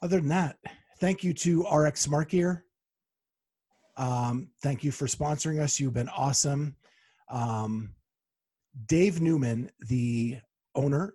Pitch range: 125-160 Hz